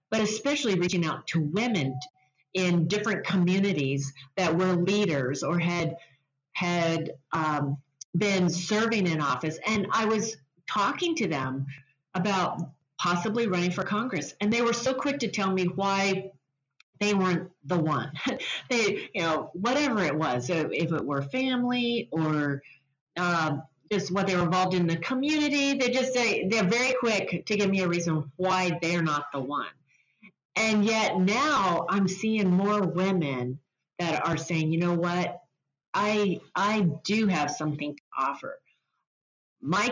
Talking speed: 155 wpm